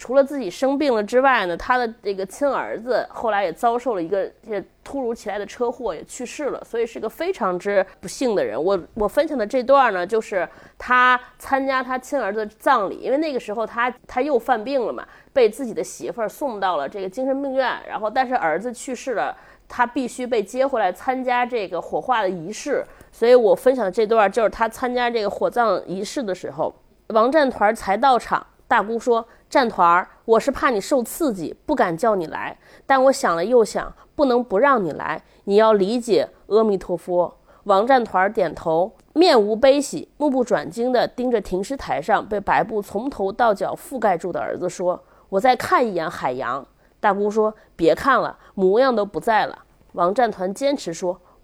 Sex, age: female, 30-49